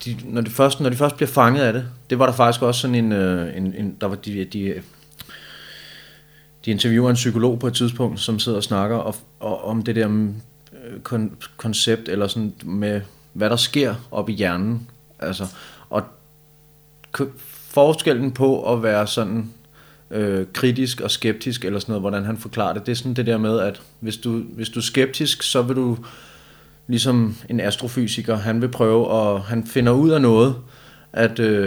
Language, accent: Danish, native